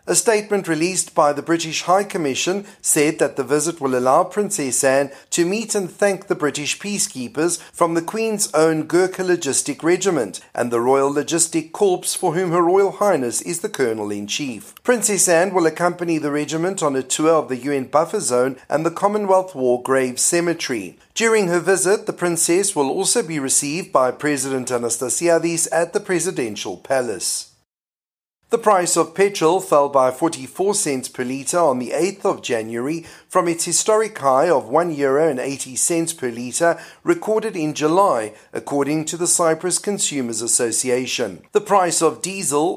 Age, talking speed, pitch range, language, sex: 40-59, 165 wpm, 135-185 Hz, English, male